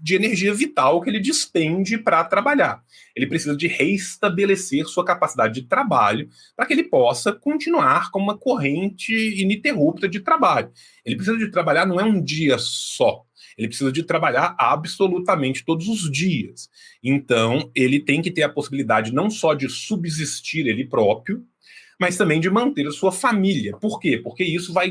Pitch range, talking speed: 140-205 Hz, 165 wpm